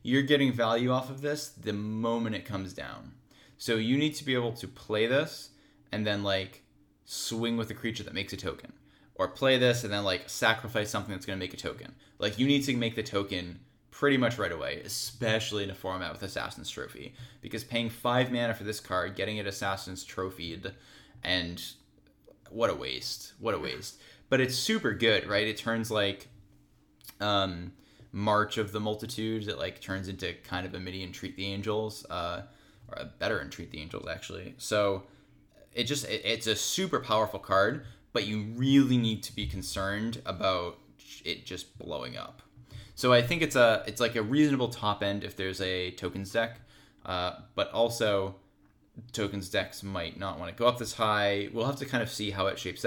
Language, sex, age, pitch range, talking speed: English, male, 10-29, 95-120 Hz, 195 wpm